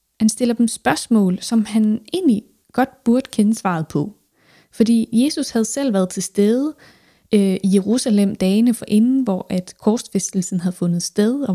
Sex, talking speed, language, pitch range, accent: female, 160 wpm, Danish, 200-245 Hz, native